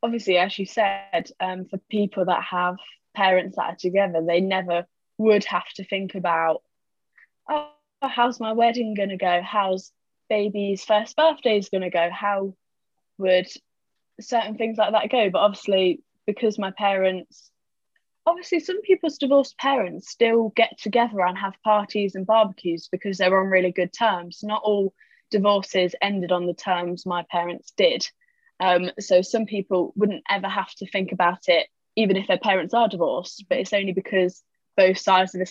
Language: English